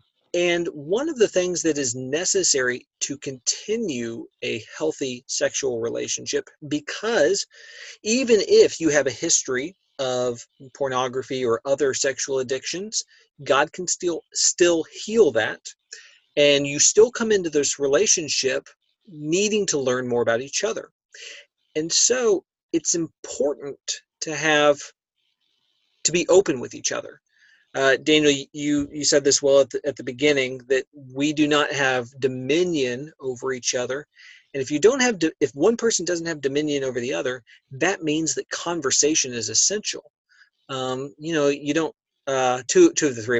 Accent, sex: American, male